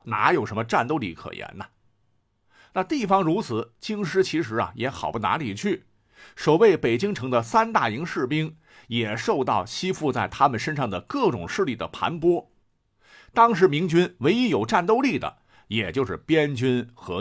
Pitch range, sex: 120-195 Hz, male